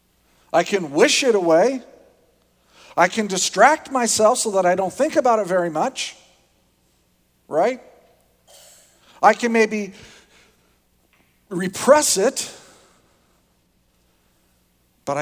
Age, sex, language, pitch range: 50-69, male, English, 130-175 Hz